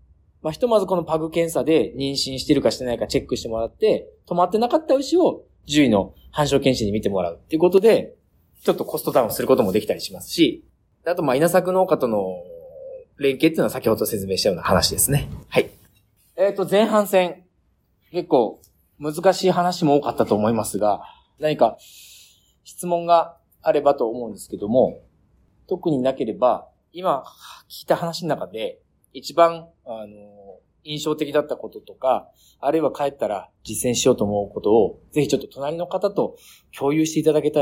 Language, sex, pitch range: Japanese, male, 105-170 Hz